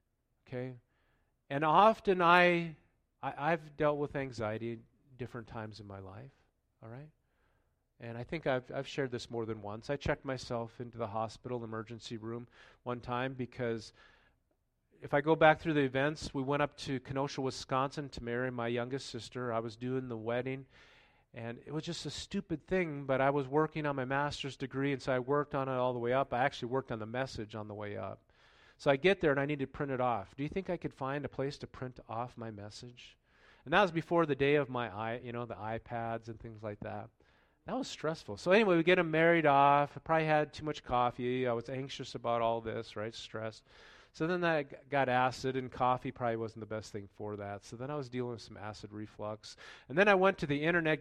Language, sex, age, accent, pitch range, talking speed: English, male, 40-59, American, 115-145 Hz, 225 wpm